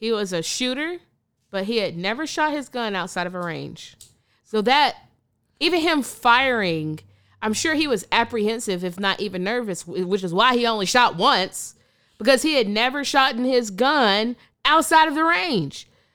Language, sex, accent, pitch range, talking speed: English, female, American, 185-250 Hz, 180 wpm